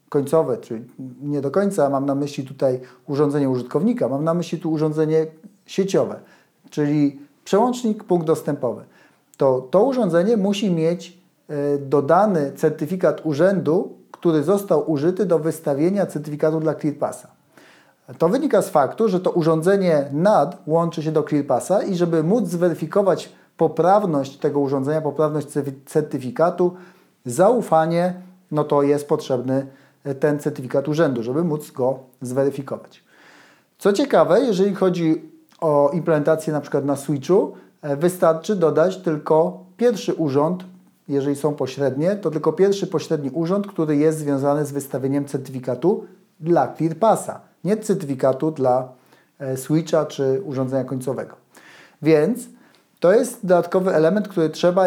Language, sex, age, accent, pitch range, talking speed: Polish, male, 40-59, native, 145-180 Hz, 125 wpm